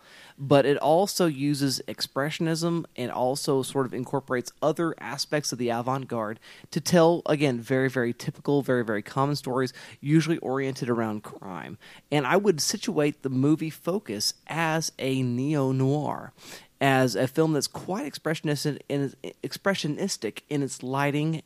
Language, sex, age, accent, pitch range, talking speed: English, male, 30-49, American, 125-160 Hz, 135 wpm